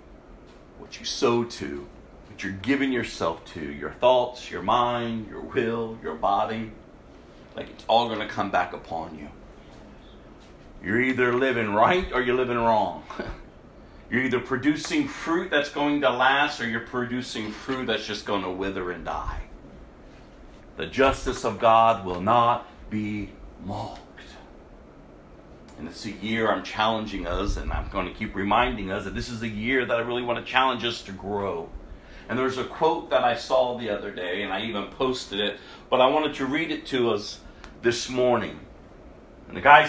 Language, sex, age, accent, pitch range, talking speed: English, male, 40-59, American, 105-150 Hz, 175 wpm